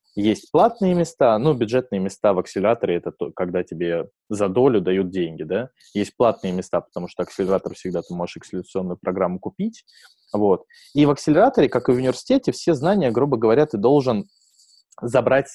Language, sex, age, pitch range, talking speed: Russian, male, 20-39, 95-130 Hz, 180 wpm